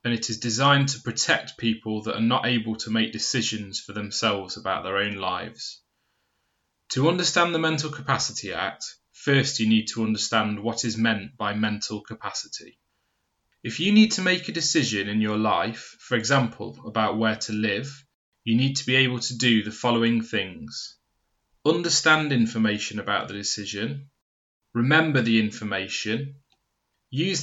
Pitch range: 110-130 Hz